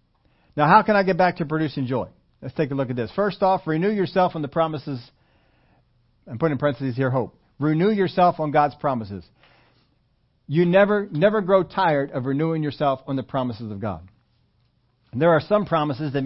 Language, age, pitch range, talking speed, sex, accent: English, 40-59, 120-155 Hz, 190 wpm, male, American